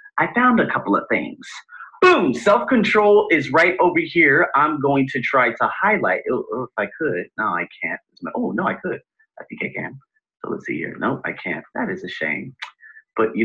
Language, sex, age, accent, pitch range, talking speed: English, male, 30-49, American, 175-285 Hz, 205 wpm